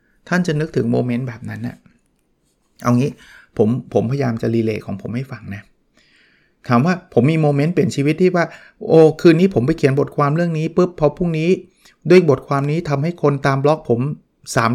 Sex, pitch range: male, 125-160 Hz